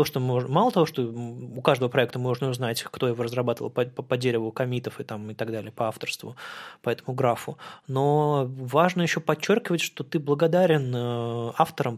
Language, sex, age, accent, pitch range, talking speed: Russian, male, 20-39, native, 120-150 Hz, 150 wpm